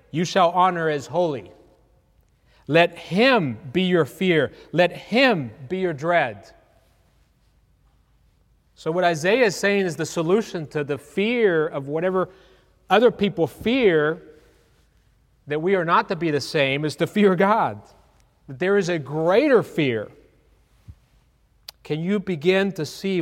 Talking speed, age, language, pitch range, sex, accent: 135 wpm, 30-49, English, 160-195 Hz, male, American